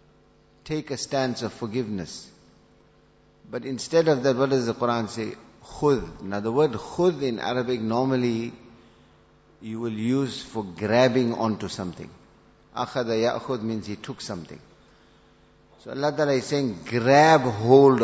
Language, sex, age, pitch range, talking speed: English, male, 50-69, 110-140 Hz, 140 wpm